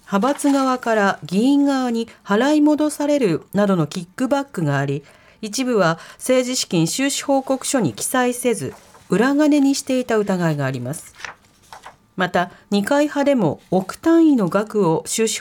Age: 40-59